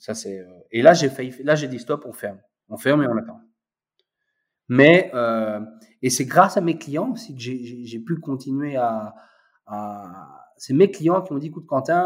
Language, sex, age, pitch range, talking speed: French, male, 30-49, 125-185 Hz, 210 wpm